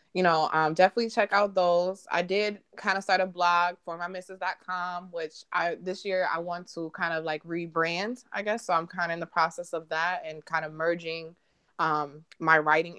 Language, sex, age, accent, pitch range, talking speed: English, female, 20-39, American, 155-175 Hz, 210 wpm